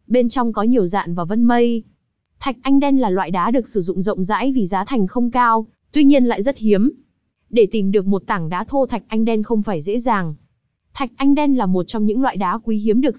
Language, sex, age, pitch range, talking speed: Vietnamese, female, 20-39, 200-255 Hz, 250 wpm